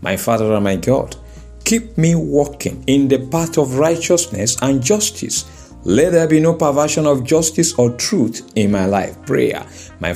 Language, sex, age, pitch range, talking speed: English, male, 50-69, 95-140 Hz, 170 wpm